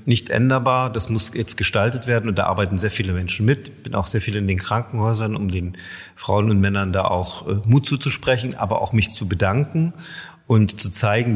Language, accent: German, German